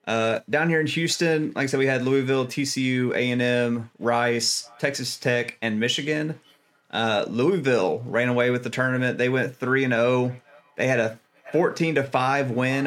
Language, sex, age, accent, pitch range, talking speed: English, male, 30-49, American, 110-130 Hz, 165 wpm